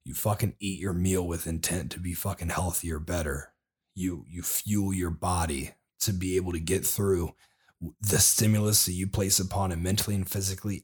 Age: 30-49